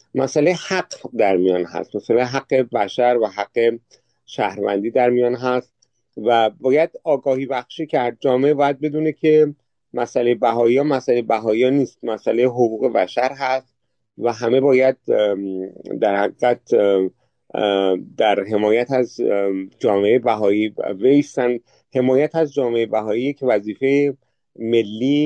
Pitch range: 105-130 Hz